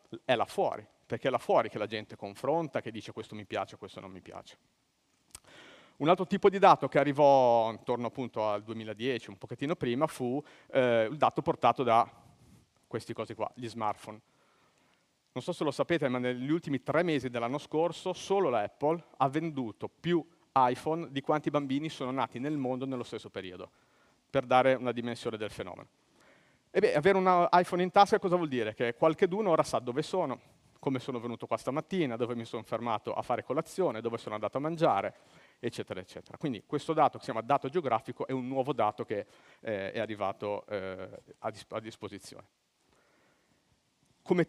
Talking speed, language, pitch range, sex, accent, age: 185 wpm, Italian, 115-155 Hz, male, native, 40-59